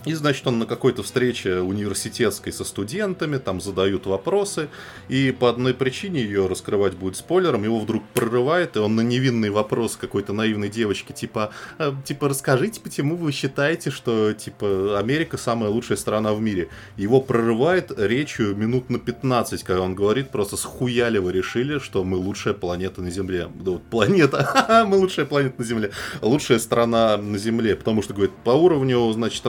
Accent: native